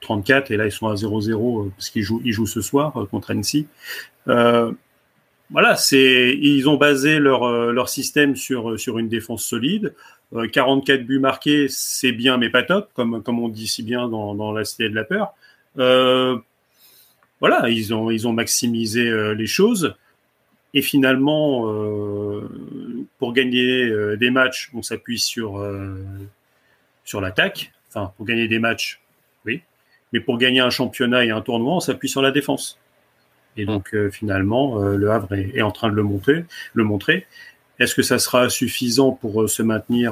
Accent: French